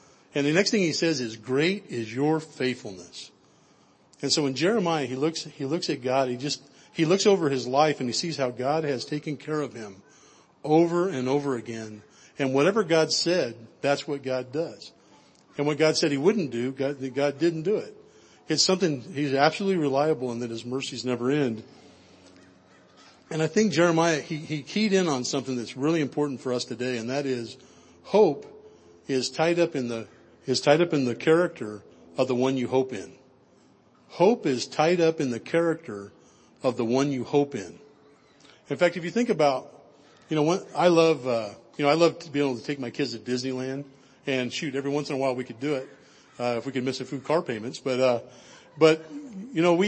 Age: 40-59